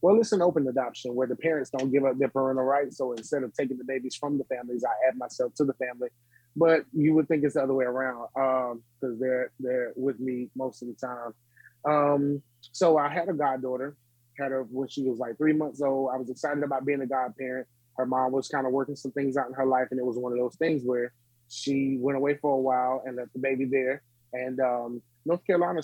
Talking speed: 245 wpm